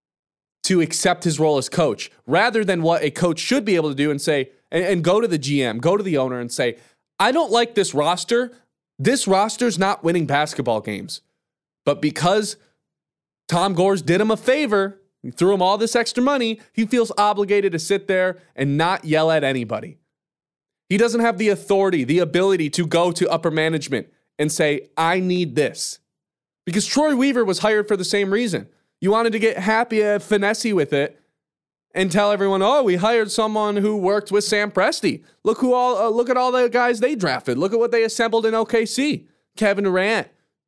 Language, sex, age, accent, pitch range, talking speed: English, male, 20-39, American, 160-220 Hz, 200 wpm